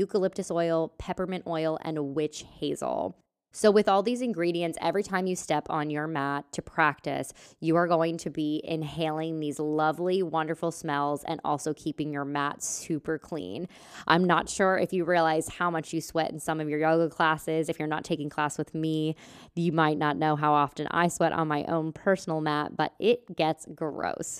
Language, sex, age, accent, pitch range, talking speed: English, female, 20-39, American, 150-185 Hz, 190 wpm